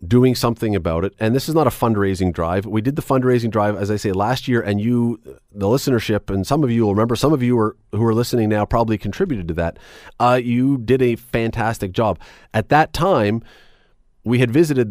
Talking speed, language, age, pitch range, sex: 215 wpm, English, 40-59, 100-125 Hz, male